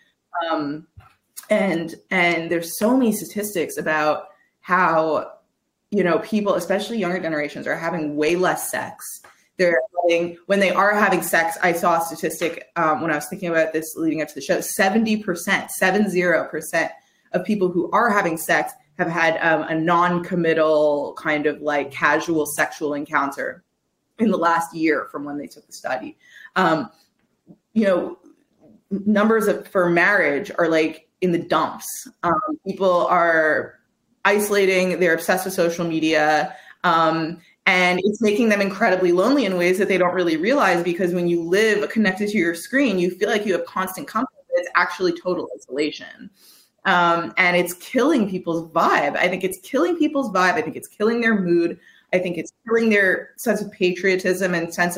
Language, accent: English, American